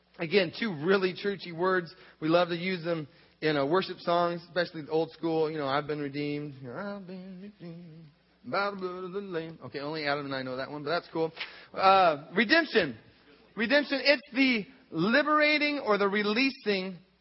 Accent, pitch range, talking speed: American, 175-235 Hz, 180 wpm